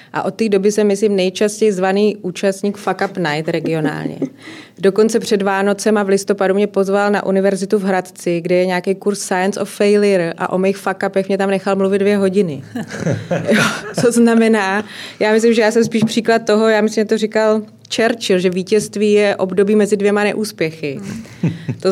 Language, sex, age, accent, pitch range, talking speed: Czech, female, 30-49, native, 190-220 Hz, 185 wpm